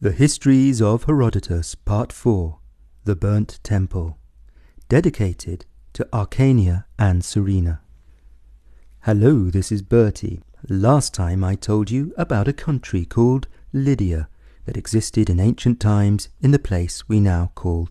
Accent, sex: British, male